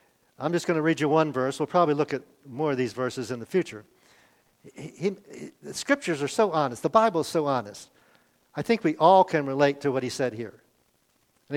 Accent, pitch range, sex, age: American, 130-185 Hz, male, 50-69